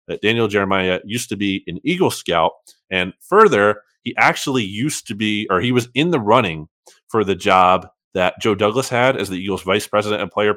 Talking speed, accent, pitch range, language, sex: 205 wpm, American, 100-135 Hz, English, male